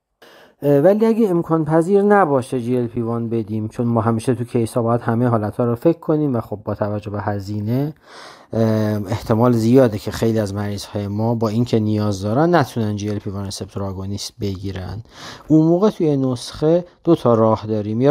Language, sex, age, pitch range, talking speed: Persian, male, 40-59, 110-135 Hz, 175 wpm